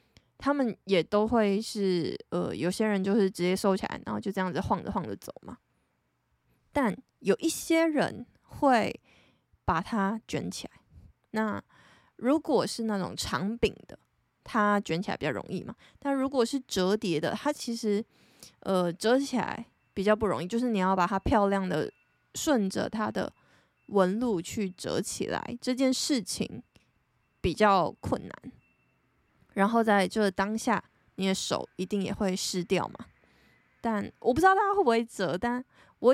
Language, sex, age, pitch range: Chinese, female, 20-39, 195-245 Hz